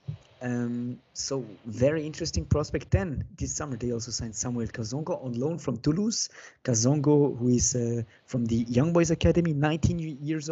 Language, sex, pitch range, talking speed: English, male, 120-150 Hz, 160 wpm